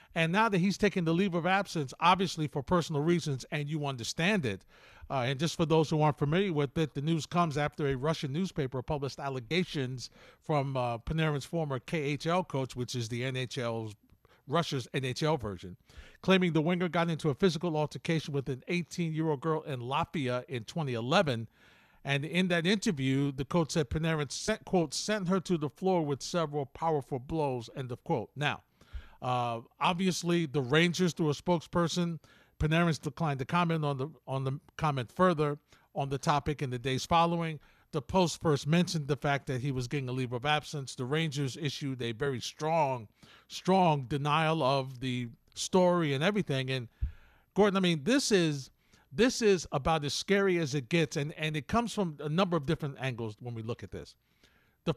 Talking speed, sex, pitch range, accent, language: 185 wpm, male, 135-170 Hz, American, English